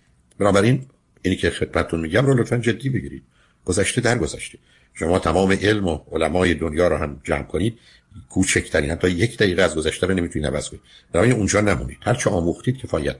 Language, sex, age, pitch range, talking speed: Persian, male, 50-69, 85-105 Hz, 170 wpm